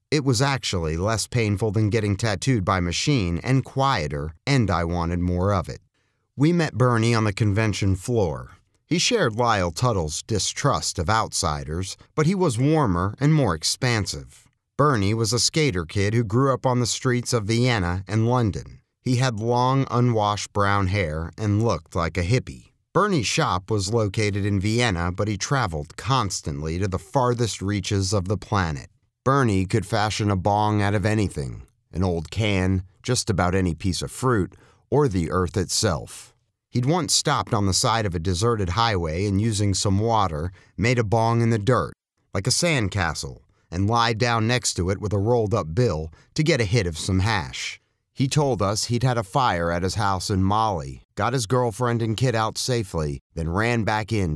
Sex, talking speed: male, 185 wpm